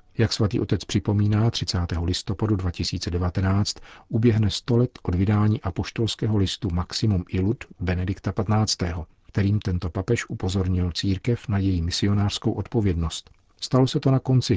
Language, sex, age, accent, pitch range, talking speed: Czech, male, 50-69, native, 90-110 Hz, 130 wpm